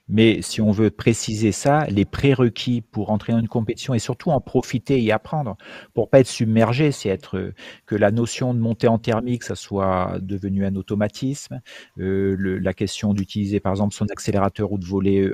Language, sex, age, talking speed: French, male, 40-59, 195 wpm